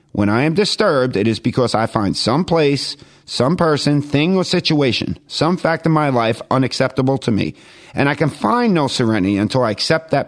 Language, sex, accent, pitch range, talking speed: English, male, American, 100-140 Hz, 200 wpm